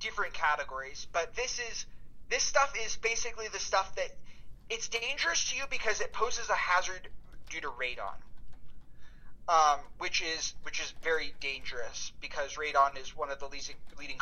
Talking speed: 160 wpm